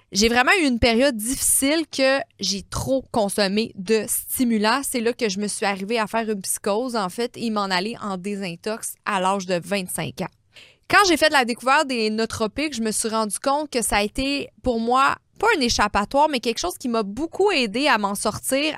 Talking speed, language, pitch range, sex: 215 wpm, French, 215-275 Hz, female